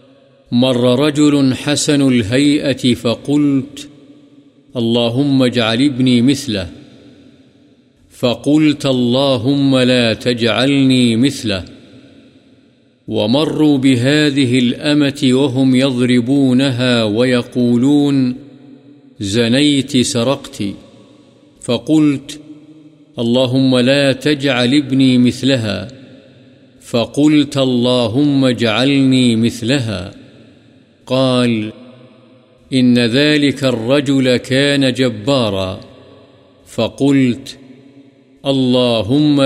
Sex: male